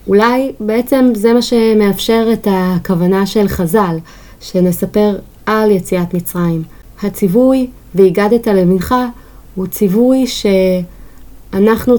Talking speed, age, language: 95 wpm, 30-49, Hebrew